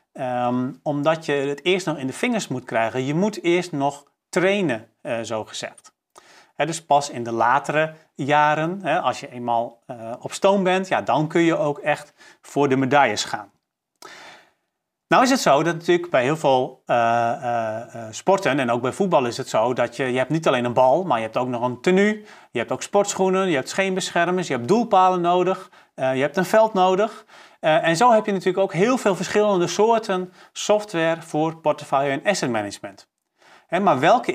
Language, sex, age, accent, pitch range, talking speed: Dutch, male, 40-59, Dutch, 130-180 Hz, 195 wpm